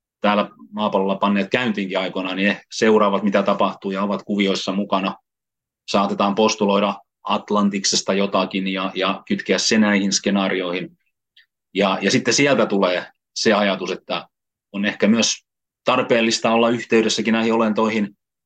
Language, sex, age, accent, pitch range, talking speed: Finnish, male, 30-49, native, 95-115 Hz, 125 wpm